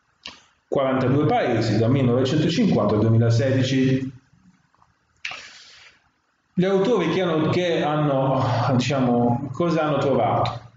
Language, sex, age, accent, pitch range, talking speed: Italian, male, 40-59, native, 120-155 Hz, 90 wpm